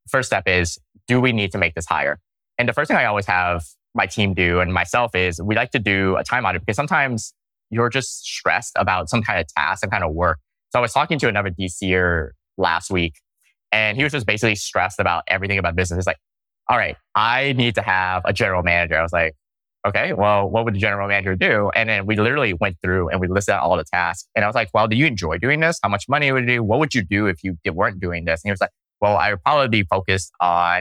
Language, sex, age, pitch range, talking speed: English, male, 20-39, 90-110 Hz, 260 wpm